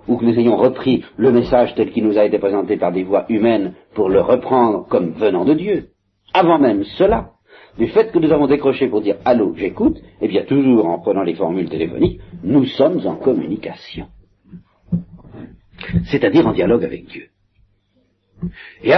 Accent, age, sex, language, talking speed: French, 60-79, male, French, 175 wpm